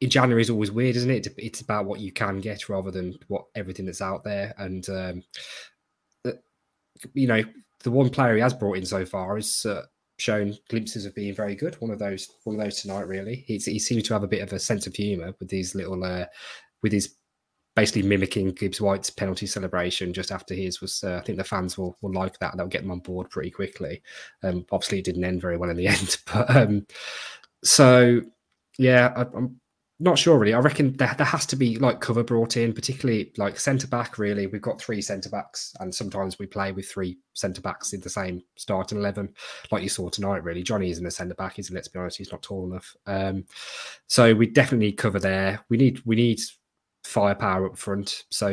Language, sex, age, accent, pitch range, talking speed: English, male, 20-39, British, 95-115 Hz, 220 wpm